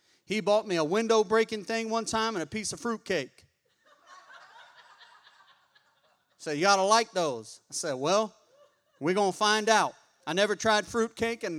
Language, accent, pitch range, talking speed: English, American, 185-240 Hz, 175 wpm